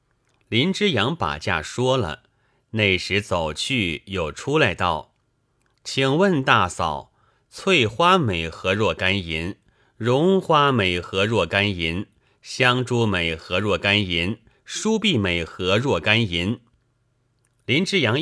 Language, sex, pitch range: Chinese, male, 95-125 Hz